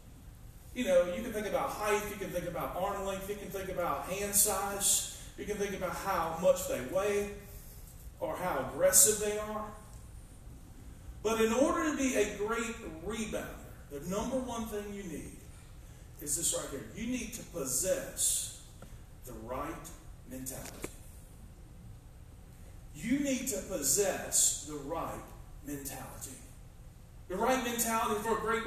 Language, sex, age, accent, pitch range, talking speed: English, male, 40-59, American, 190-240 Hz, 145 wpm